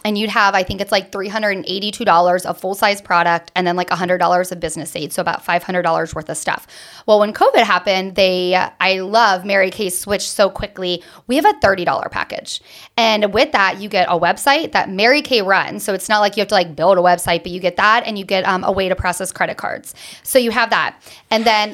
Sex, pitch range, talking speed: female, 180-215 Hz, 230 wpm